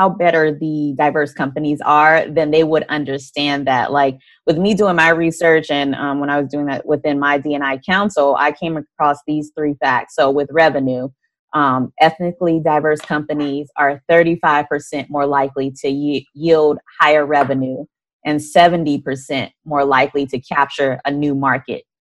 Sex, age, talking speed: female, 20-39, 165 wpm